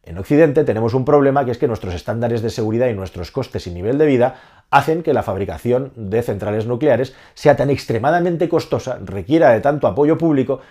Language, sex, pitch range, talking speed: Spanish, male, 105-140 Hz, 195 wpm